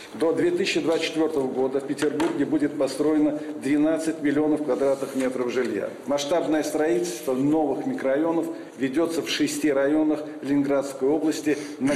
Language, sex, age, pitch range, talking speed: Russian, male, 50-69, 140-160 Hz, 115 wpm